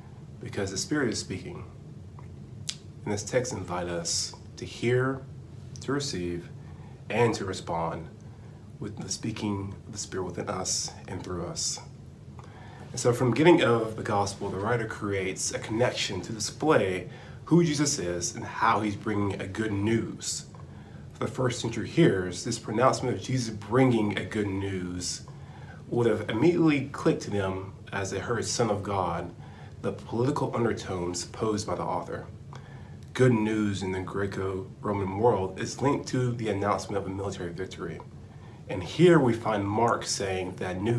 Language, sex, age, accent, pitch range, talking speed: English, male, 30-49, American, 100-125 Hz, 160 wpm